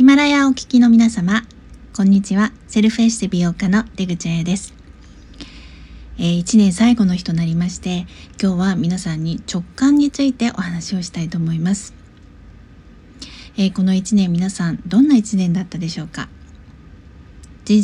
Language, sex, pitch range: Japanese, female, 170-220 Hz